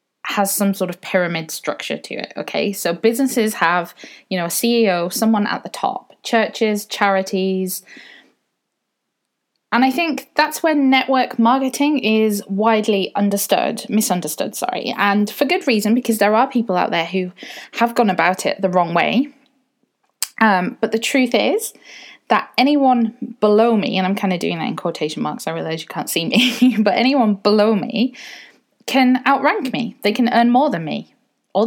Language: English